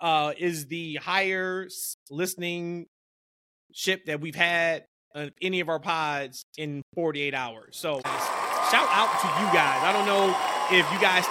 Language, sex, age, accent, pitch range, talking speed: English, male, 20-39, American, 150-195 Hz, 155 wpm